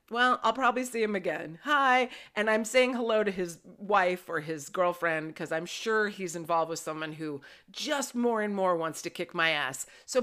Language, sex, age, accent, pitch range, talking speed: English, female, 30-49, American, 175-250 Hz, 205 wpm